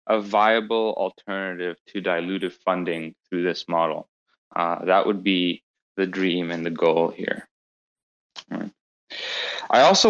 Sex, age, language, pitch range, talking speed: male, 20-39, English, 95-115 Hz, 130 wpm